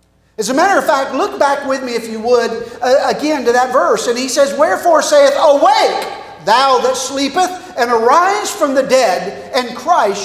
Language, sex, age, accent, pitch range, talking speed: English, male, 50-69, American, 200-280 Hz, 195 wpm